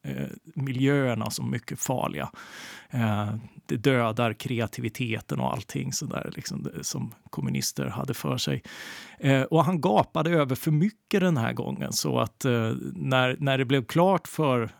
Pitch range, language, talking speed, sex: 120-145 Hz, Swedish, 155 wpm, male